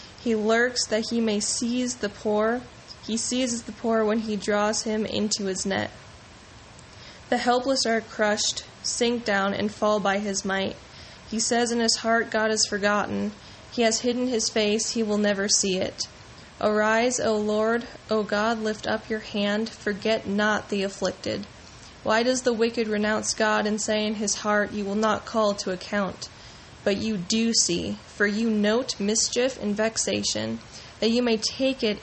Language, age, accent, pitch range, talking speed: English, 10-29, American, 205-225 Hz, 175 wpm